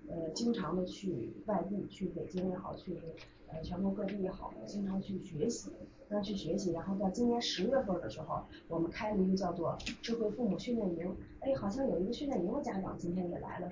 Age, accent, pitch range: 20-39, native, 180-240 Hz